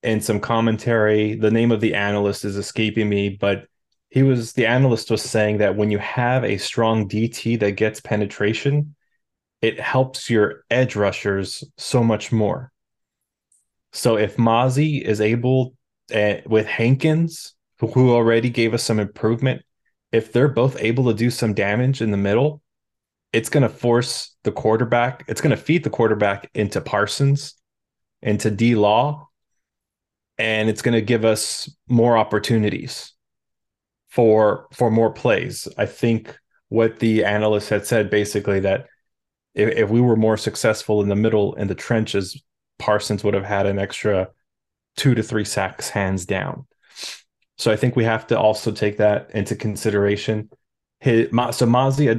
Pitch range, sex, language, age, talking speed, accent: 105-125 Hz, male, English, 20-39, 155 wpm, American